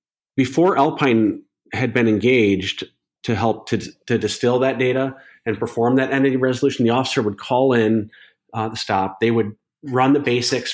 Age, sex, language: 40-59, male, English